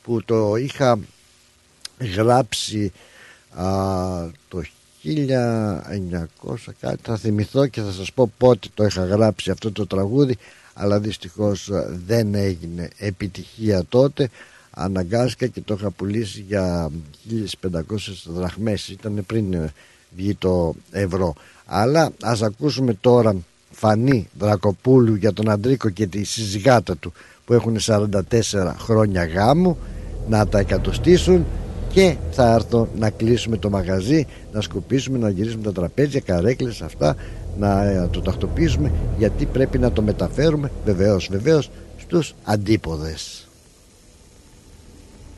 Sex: male